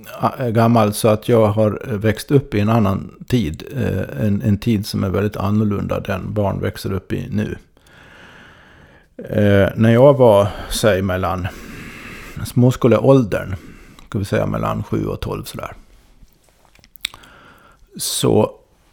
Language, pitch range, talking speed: Swedish, 100-115 Hz, 125 wpm